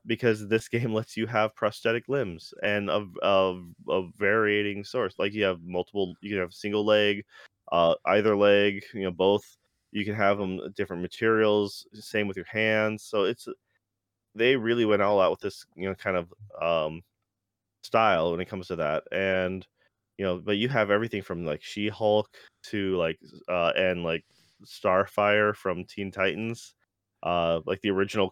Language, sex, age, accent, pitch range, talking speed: English, male, 20-39, American, 95-110 Hz, 175 wpm